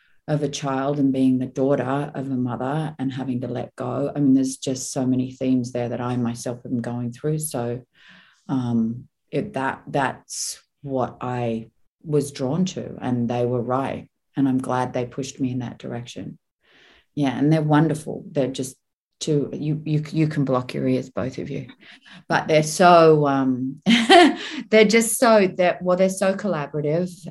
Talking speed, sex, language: 180 wpm, female, English